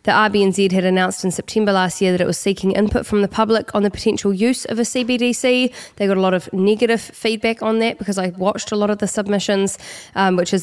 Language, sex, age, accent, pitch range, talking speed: English, female, 20-39, Australian, 180-210 Hz, 245 wpm